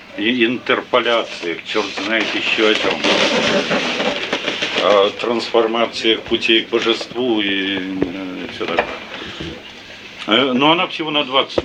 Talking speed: 105 wpm